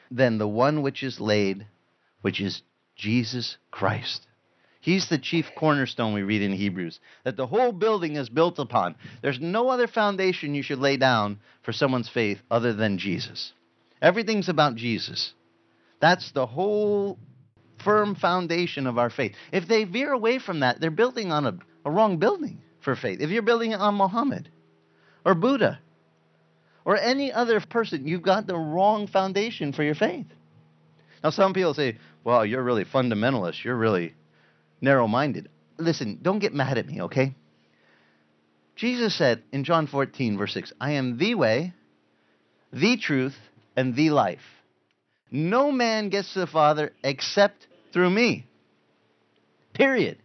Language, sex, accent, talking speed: English, male, American, 155 wpm